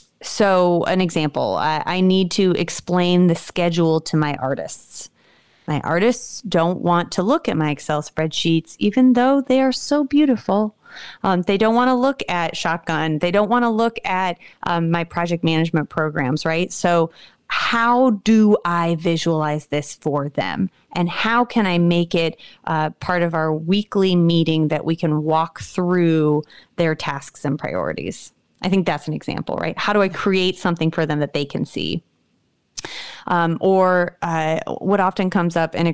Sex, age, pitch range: female, 30-49, 160-190 Hz